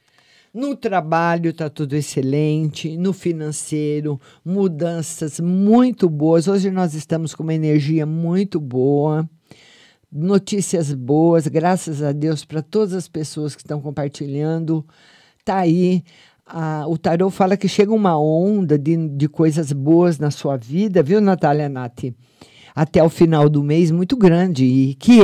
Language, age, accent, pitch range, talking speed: Portuguese, 50-69, Brazilian, 155-215 Hz, 140 wpm